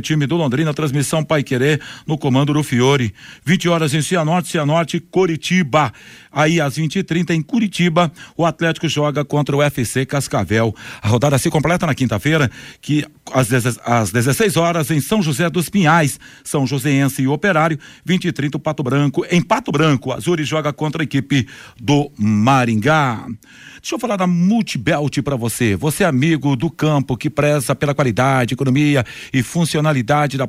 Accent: Brazilian